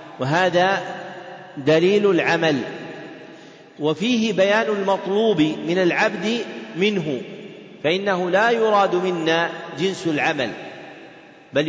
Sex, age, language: male, 40-59, Arabic